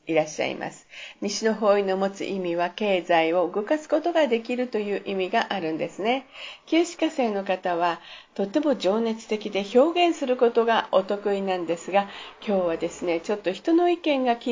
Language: Japanese